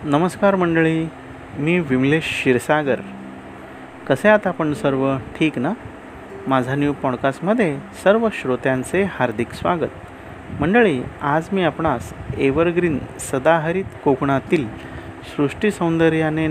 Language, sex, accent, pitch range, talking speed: Marathi, male, native, 135-170 Hz, 95 wpm